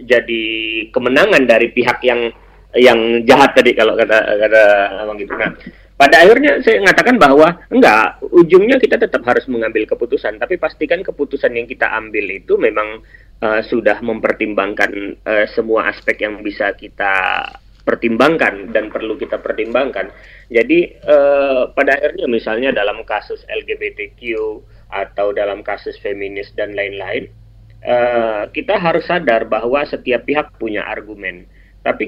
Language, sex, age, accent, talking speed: Indonesian, male, 30-49, native, 135 wpm